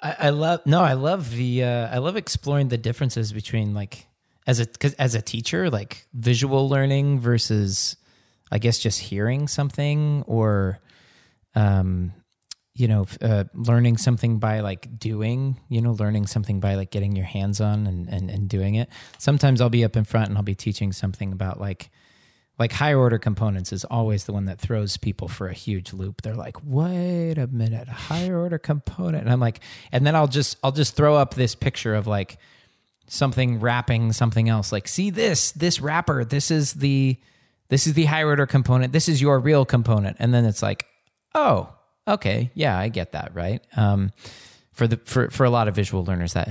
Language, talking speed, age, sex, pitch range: English, 195 wpm, 30-49, male, 105-135 Hz